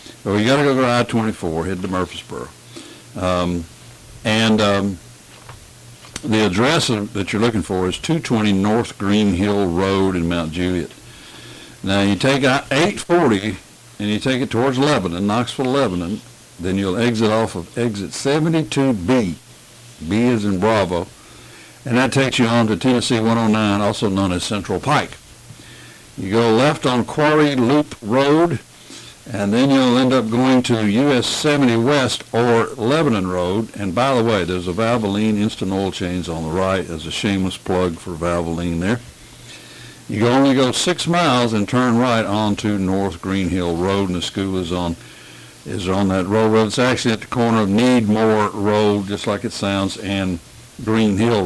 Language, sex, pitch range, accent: English, male, 95-120 Hz, American